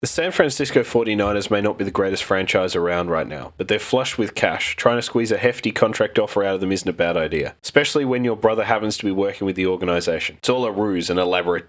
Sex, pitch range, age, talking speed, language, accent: male, 95-120 Hz, 20-39, 250 wpm, English, Australian